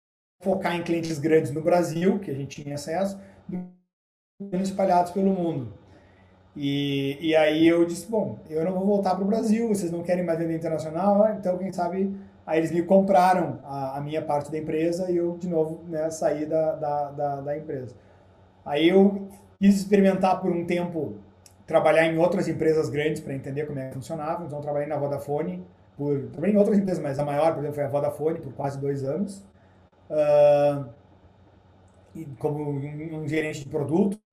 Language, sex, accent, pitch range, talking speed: Portuguese, male, Brazilian, 145-185 Hz, 185 wpm